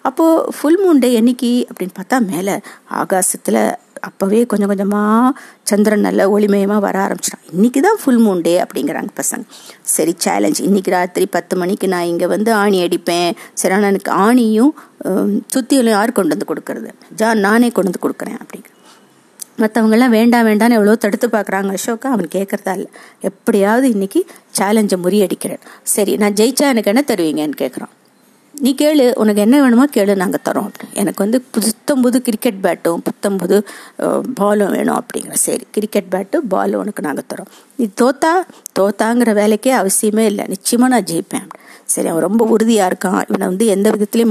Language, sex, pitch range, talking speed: Tamil, female, 195-240 Hz, 135 wpm